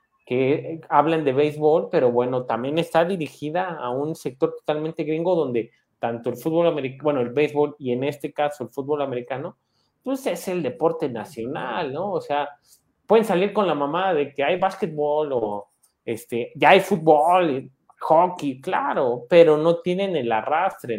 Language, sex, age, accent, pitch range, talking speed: Spanish, male, 30-49, Mexican, 140-195 Hz, 165 wpm